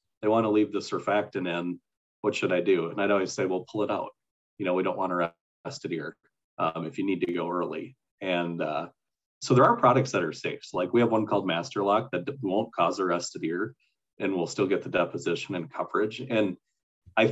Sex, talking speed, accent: male, 225 wpm, American